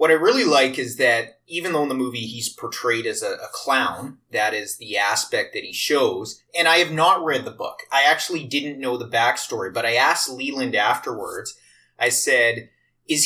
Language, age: English, 30-49